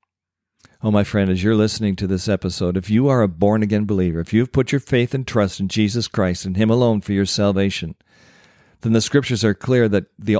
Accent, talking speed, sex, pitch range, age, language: American, 220 wpm, male, 100-130 Hz, 50-69, English